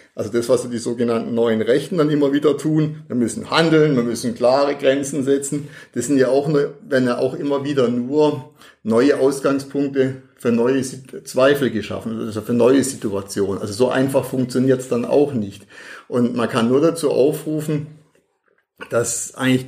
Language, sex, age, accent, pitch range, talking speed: German, male, 50-69, German, 115-145 Hz, 160 wpm